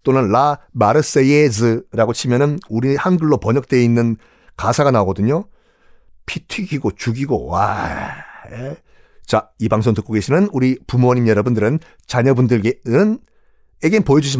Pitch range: 115-175 Hz